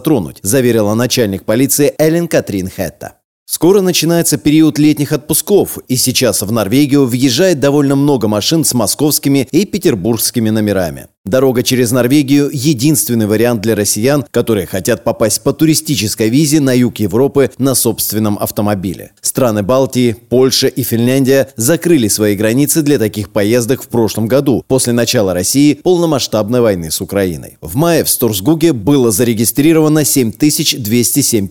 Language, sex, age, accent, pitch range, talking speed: Russian, male, 30-49, native, 110-150 Hz, 135 wpm